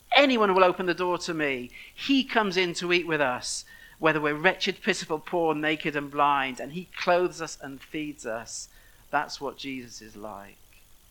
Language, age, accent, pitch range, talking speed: English, 50-69, British, 130-170 Hz, 185 wpm